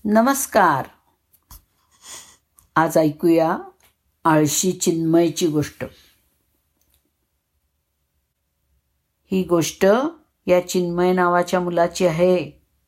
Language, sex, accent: Marathi, female, native